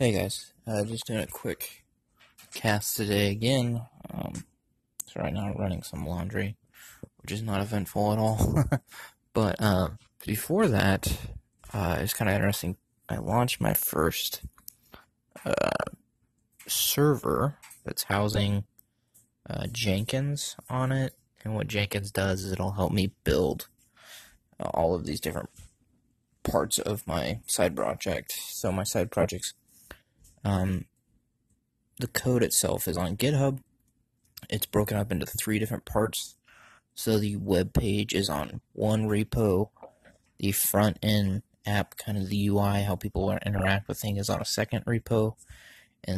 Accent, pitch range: American, 95-115 Hz